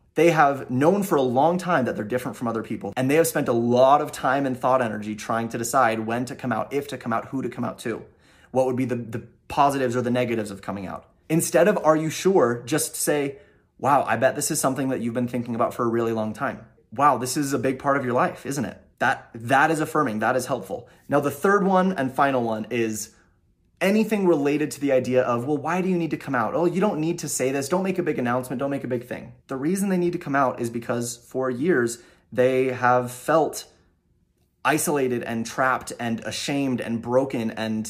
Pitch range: 120-150 Hz